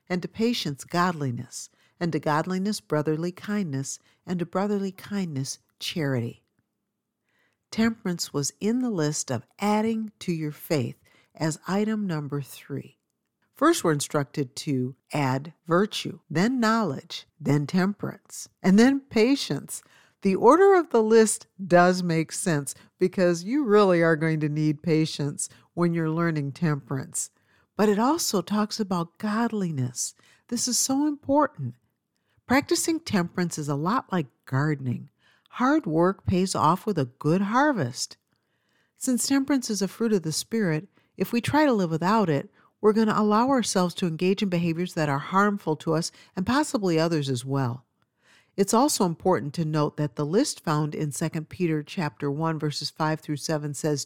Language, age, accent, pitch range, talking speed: English, 50-69, American, 150-210 Hz, 155 wpm